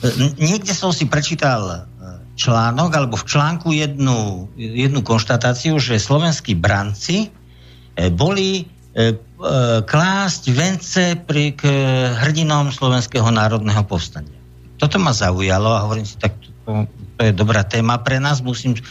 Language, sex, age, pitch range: Slovak, male, 60-79, 110-150 Hz